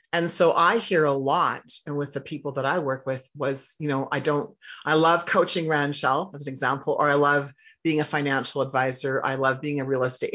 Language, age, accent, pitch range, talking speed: English, 40-59, American, 140-175 Hz, 225 wpm